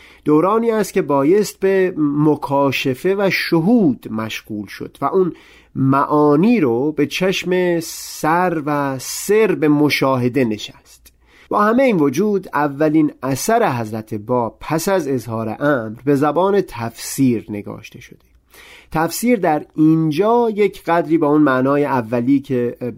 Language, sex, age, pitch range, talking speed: Persian, male, 40-59, 125-170 Hz, 130 wpm